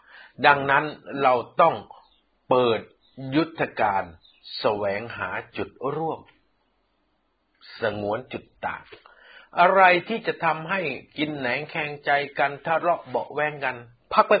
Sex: male